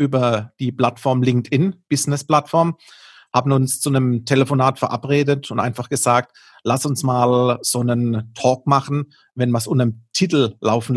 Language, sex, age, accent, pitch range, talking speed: German, male, 40-59, German, 120-140 Hz, 155 wpm